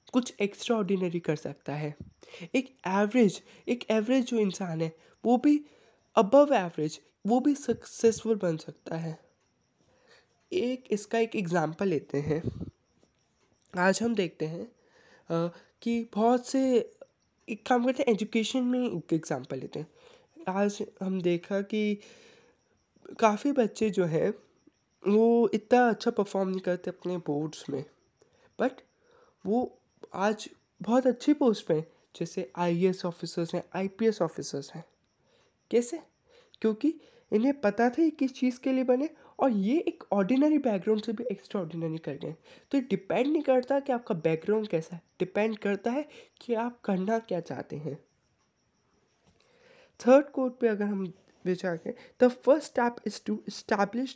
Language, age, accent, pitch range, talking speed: Hindi, 20-39, native, 180-250 Hz, 145 wpm